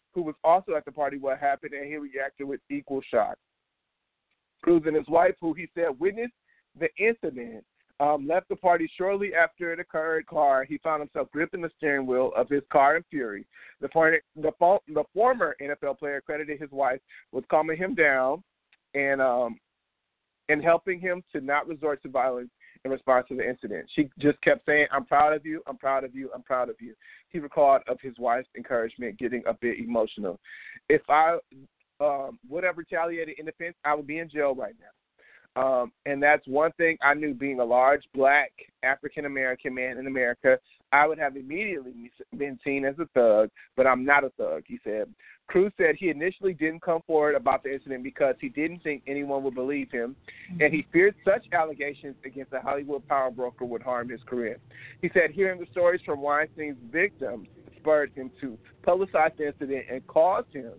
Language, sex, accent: English, male, American